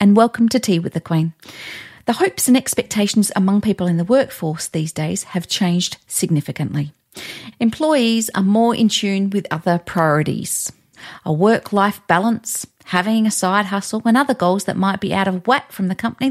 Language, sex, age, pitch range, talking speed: English, female, 40-59, 175-230 Hz, 175 wpm